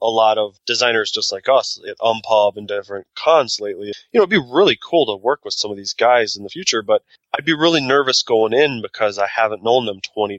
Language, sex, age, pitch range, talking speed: English, male, 20-39, 105-130 Hz, 245 wpm